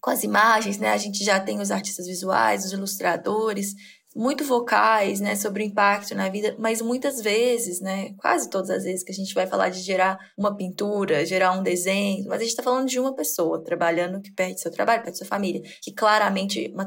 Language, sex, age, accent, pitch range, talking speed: English, female, 20-39, Brazilian, 185-240 Hz, 215 wpm